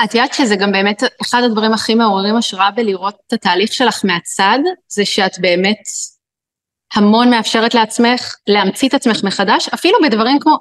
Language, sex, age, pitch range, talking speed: Hebrew, female, 30-49, 215-275 Hz, 160 wpm